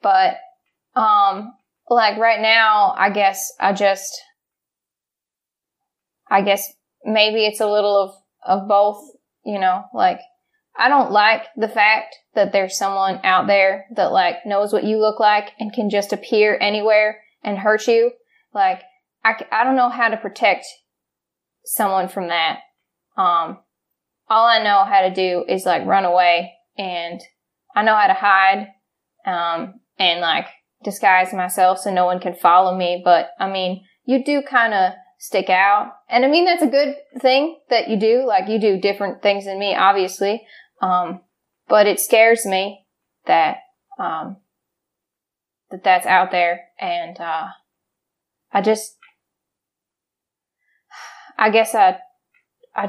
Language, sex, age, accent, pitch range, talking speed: English, female, 10-29, American, 195-265 Hz, 145 wpm